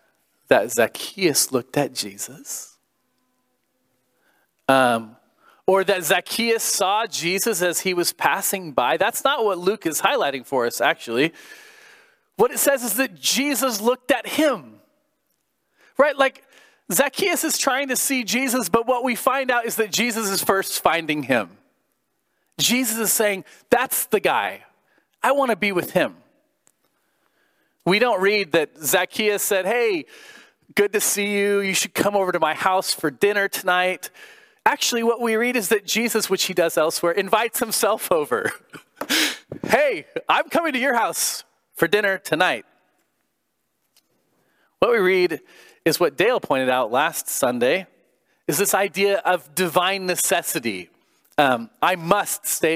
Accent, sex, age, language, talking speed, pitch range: American, male, 30-49, English, 150 wpm, 175-260 Hz